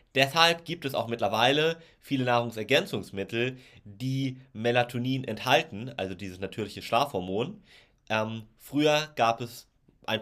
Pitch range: 110-135 Hz